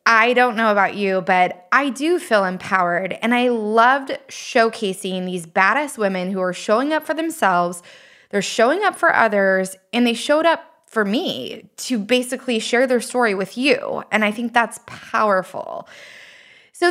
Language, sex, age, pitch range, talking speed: English, female, 20-39, 195-255 Hz, 165 wpm